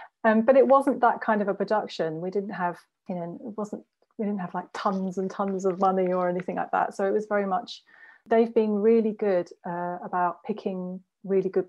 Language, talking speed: English, 220 wpm